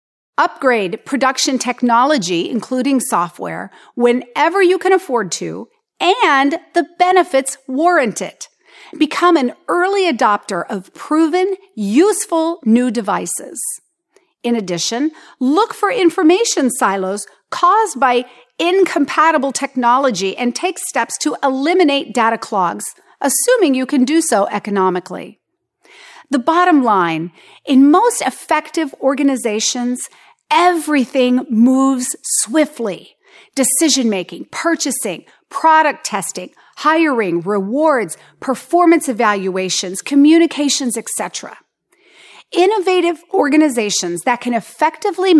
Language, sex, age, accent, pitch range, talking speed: English, female, 40-59, American, 230-335 Hz, 95 wpm